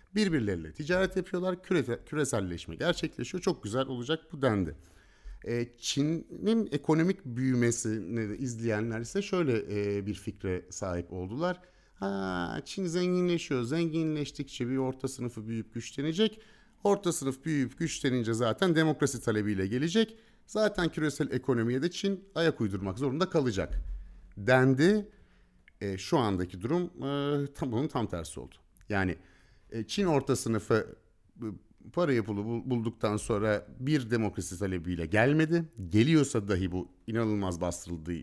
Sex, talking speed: male, 120 wpm